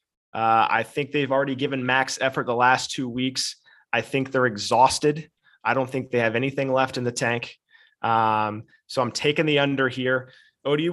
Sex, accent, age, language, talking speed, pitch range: male, American, 20-39, English, 185 wpm, 115-135 Hz